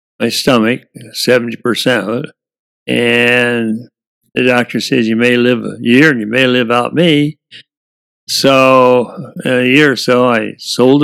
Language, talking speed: English, 140 wpm